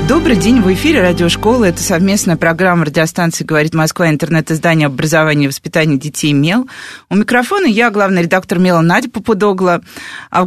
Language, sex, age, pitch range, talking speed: Russian, female, 20-39, 165-205 Hz, 155 wpm